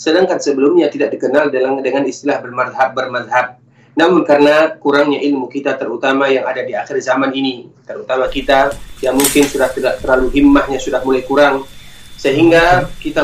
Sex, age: male, 30-49